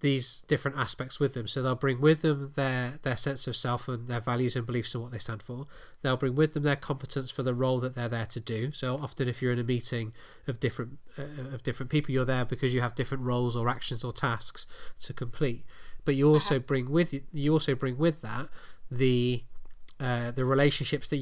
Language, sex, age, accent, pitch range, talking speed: English, male, 20-39, British, 125-140 Hz, 225 wpm